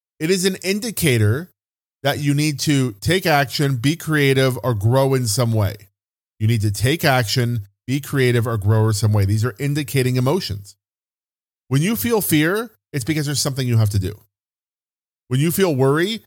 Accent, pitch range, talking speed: American, 110-155 Hz, 180 wpm